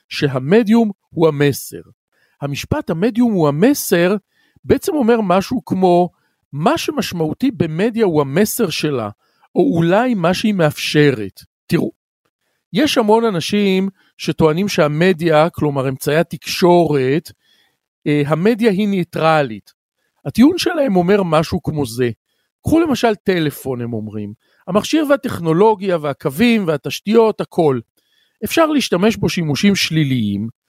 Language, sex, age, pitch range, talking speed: Hebrew, male, 50-69, 150-230 Hz, 110 wpm